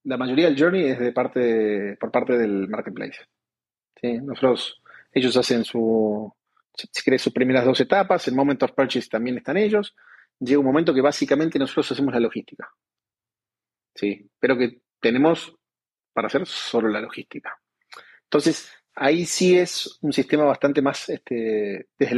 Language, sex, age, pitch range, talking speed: Spanish, male, 30-49, 120-140 Hz, 155 wpm